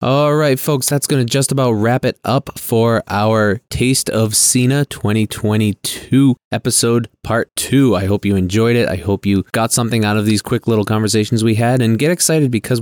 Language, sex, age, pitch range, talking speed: English, male, 20-39, 100-120 Hz, 195 wpm